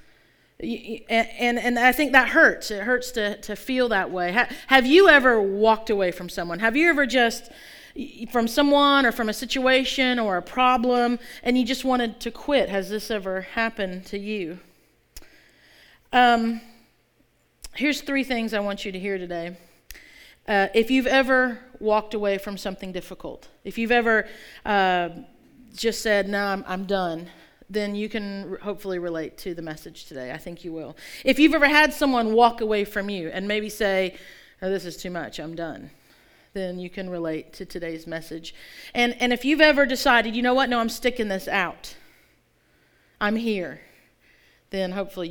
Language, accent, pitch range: English, American, 190-250 Hz